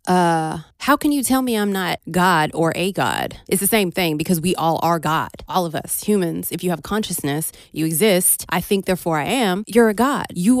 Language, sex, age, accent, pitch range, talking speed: English, female, 20-39, American, 160-215 Hz, 225 wpm